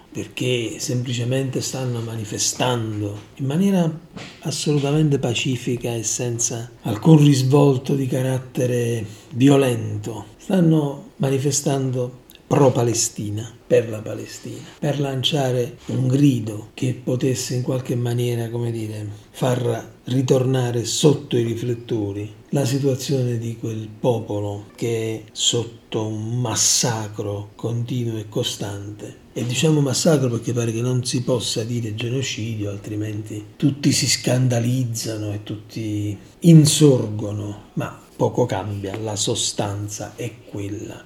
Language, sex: Italian, male